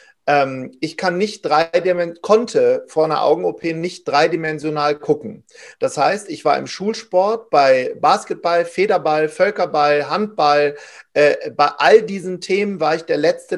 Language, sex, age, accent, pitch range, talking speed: German, male, 40-59, German, 150-245 Hz, 125 wpm